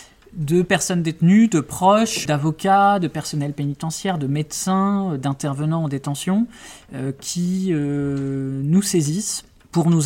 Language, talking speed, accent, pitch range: French, 125 wpm, French, 135-165 Hz